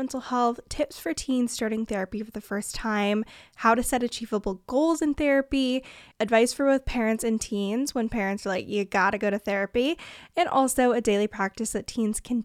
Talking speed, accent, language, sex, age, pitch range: 205 wpm, American, English, female, 10-29, 215-265 Hz